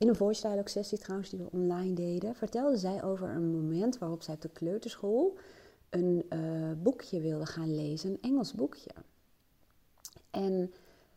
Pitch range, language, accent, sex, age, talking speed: 165-215 Hz, Dutch, Dutch, female, 30-49, 160 wpm